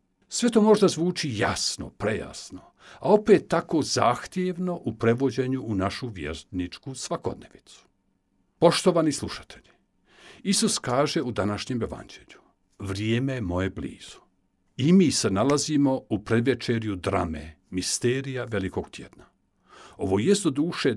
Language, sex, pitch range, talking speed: Croatian, male, 105-170 Hz, 110 wpm